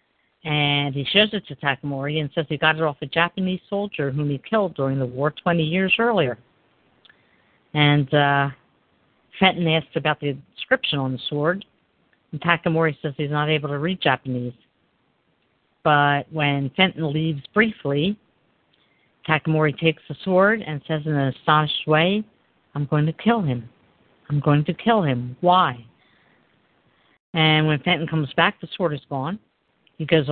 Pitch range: 145-175 Hz